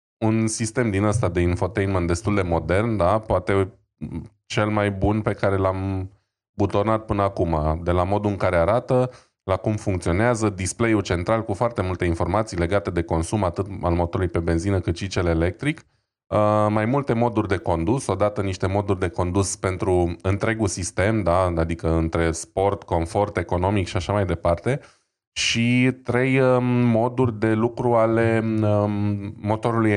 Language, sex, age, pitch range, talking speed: Romanian, male, 20-39, 90-110 Hz, 155 wpm